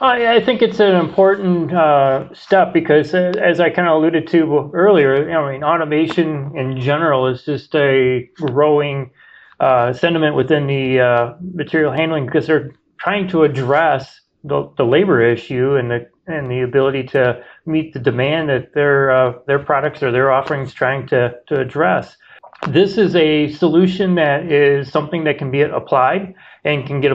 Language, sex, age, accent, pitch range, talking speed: English, male, 30-49, American, 125-155 Hz, 165 wpm